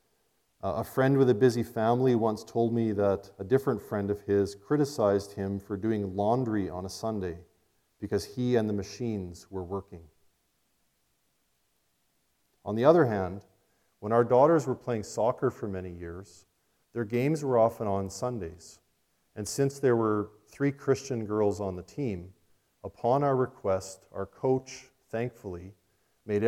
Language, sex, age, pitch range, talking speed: English, male, 40-59, 95-120 Hz, 150 wpm